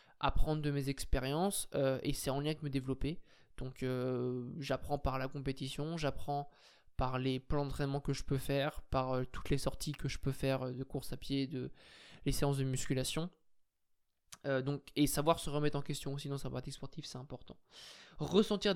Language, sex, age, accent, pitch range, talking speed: French, male, 20-39, French, 135-150 Hz, 200 wpm